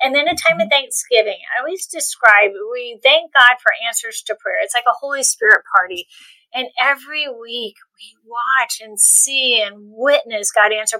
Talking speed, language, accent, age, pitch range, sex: 180 wpm, English, American, 30-49, 225-310 Hz, female